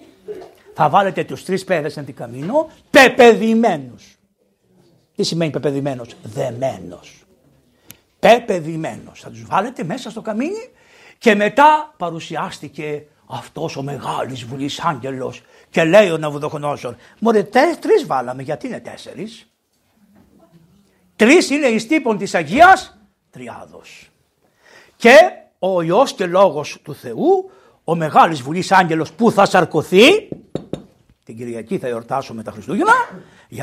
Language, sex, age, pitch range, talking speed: Greek, male, 60-79, 150-235 Hz, 115 wpm